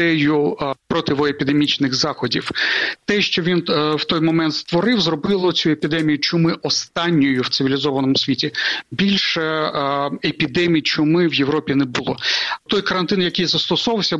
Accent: native